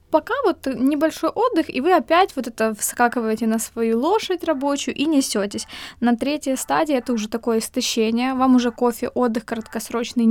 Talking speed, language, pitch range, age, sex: 165 wpm, Ukrainian, 230-265 Hz, 20-39, female